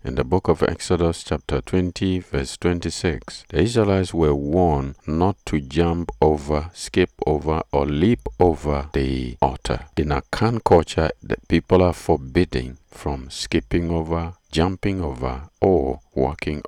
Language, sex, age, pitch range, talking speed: English, male, 50-69, 65-85 Hz, 140 wpm